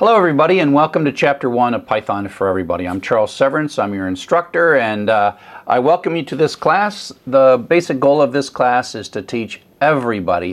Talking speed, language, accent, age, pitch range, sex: 200 wpm, English, American, 50-69, 100-145 Hz, male